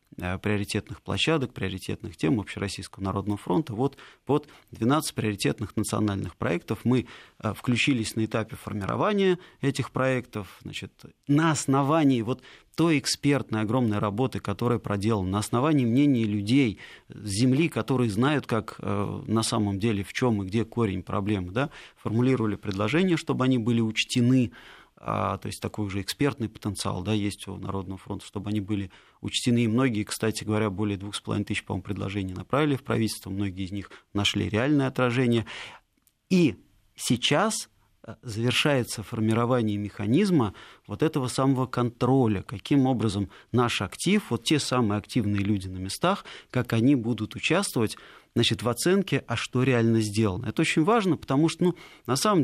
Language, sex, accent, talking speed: Russian, male, native, 145 wpm